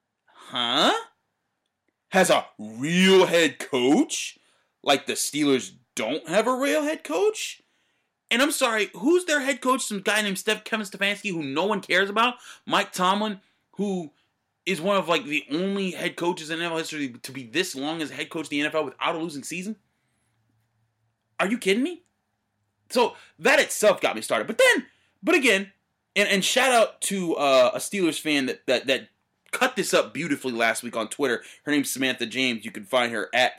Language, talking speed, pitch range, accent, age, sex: English, 185 wpm, 130-210 Hz, American, 30-49, male